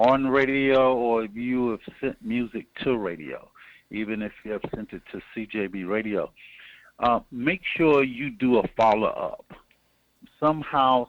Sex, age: male, 50-69